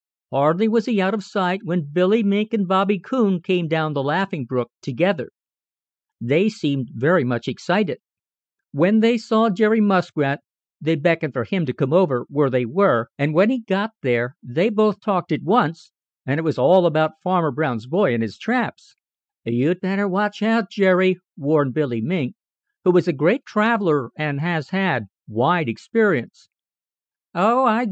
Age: 50-69